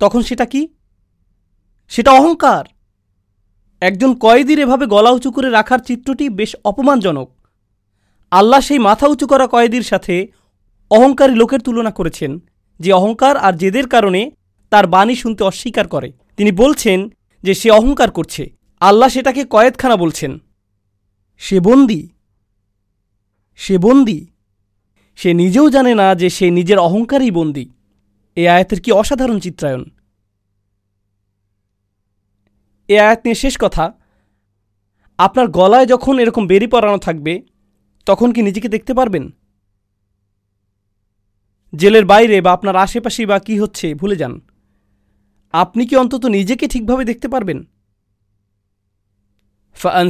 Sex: male